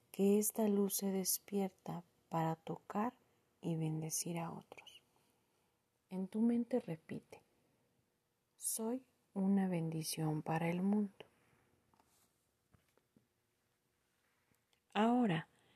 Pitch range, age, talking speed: 175-215 Hz, 40-59, 85 wpm